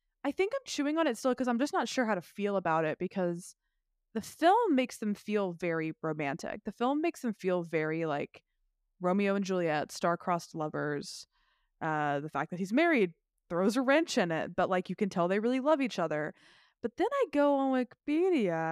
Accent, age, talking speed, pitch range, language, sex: American, 20-39, 205 wpm, 170-235 Hz, English, female